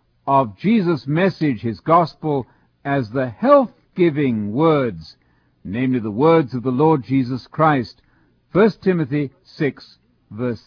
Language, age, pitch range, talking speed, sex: English, 60-79, 125-180 Hz, 120 wpm, male